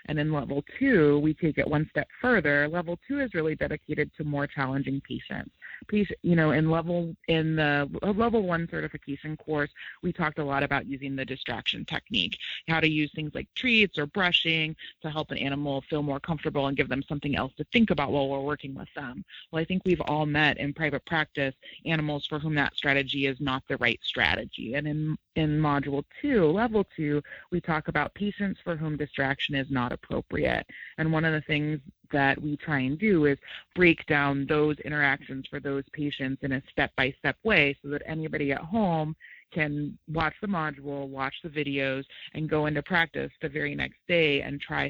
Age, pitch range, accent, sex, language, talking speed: 30-49, 140-165 Hz, American, female, English, 195 wpm